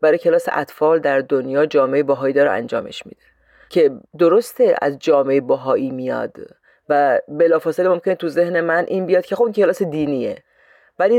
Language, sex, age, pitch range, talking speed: Persian, female, 40-59, 155-220 Hz, 155 wpm